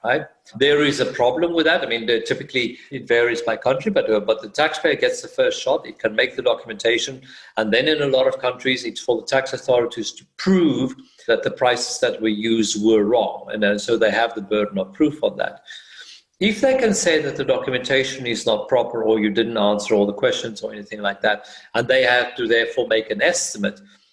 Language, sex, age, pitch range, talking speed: English, male, 50-69, 120-190 Hz, 225 wpm